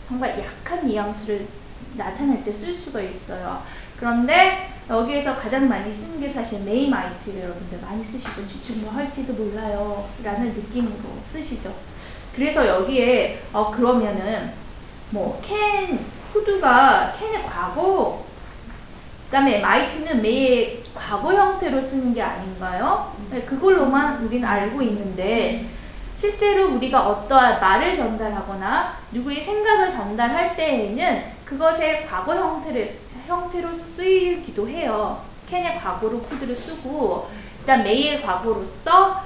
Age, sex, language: 20-39, female, Korean